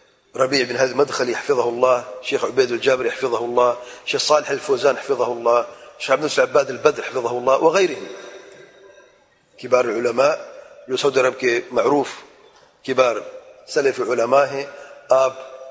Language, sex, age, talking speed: English, male, 40-59, 125 wpm